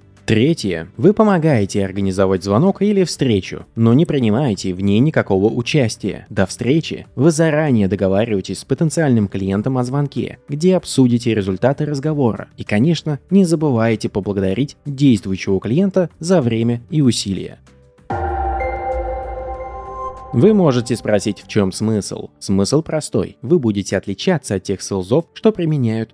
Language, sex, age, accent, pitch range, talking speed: Russian, male, 20-39, native, 100-150 Hz, 125 wpm